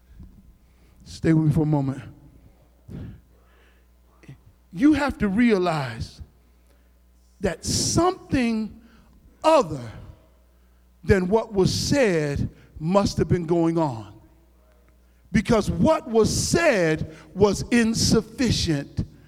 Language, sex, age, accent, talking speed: English, male, 50-69, American, 85 wpm